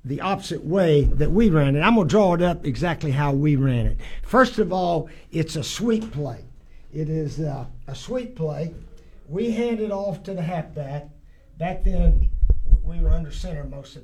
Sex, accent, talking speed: male, American, 195 wpm